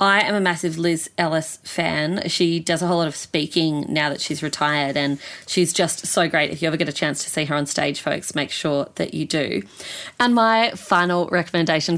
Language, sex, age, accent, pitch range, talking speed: English, female, 30-49, Australian, 165-195 Hz, 220 wpm